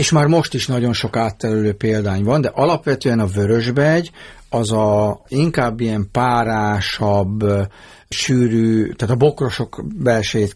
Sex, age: male, 50-69